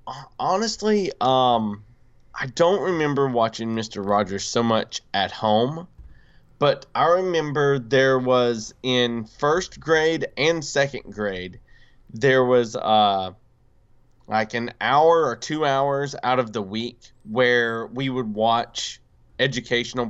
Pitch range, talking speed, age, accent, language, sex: 115-140 Hz, 120 wpm, 20-39, American, English, male